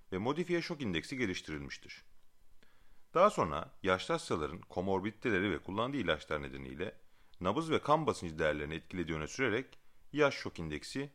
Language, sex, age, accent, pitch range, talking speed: Turkish, male, 40-59, native, 85-145 Hz, 130 wpm